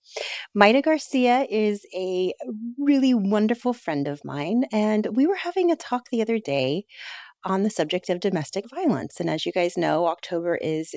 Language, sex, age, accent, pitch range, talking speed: English, female, 30-49, American, 170-215 Hz, 170 wpm